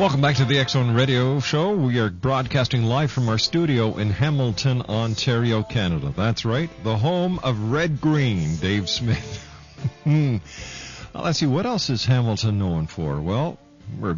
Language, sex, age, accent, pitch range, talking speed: English, male, 50-69, American, 105-140 Hz, 155 wpm